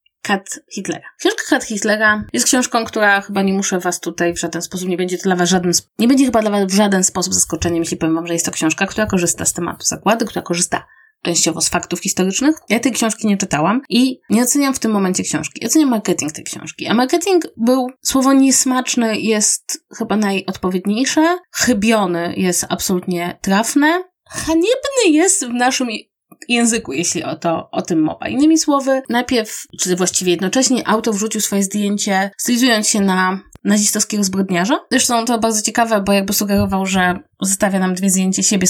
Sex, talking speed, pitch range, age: female, 180 wpm, 180-250 Hz, 20-39